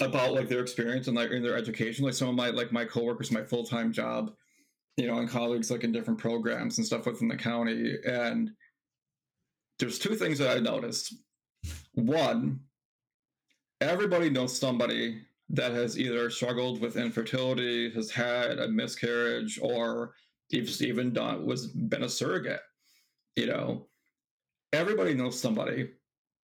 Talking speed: 150 wpm